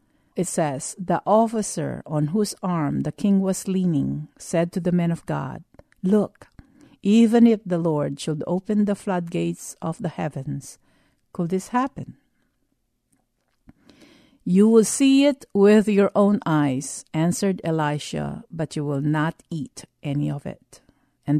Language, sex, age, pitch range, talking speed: English, female, 50-69, 155-205 Hz, 145 wpm